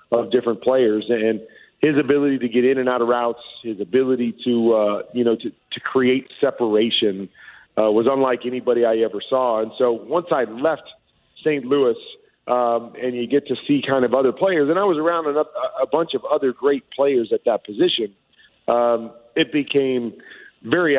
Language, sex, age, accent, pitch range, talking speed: English, male, 40-59, American, 115-130 Hz, 185 wpm